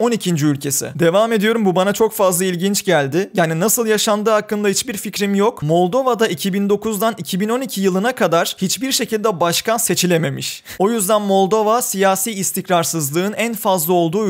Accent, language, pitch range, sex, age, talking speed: native, Turkish, 165-205 Hz, male, 30-49, 145 wpm